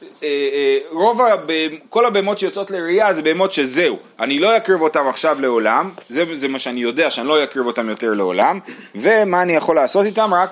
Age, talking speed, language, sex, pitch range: 30-49, 195 wpm, Hebrew, male, 140-200 Hz